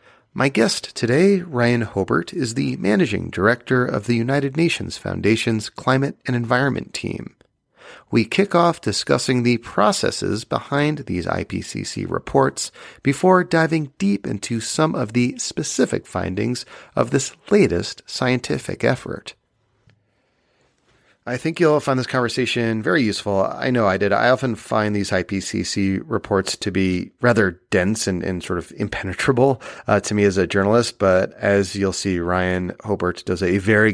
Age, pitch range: 40-59, 95-125 Hz